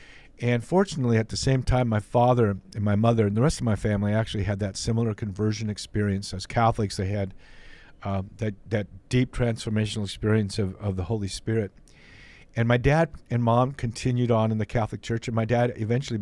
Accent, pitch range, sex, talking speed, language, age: American, 100-125 Hz, male, 195 wpm, English, 50-69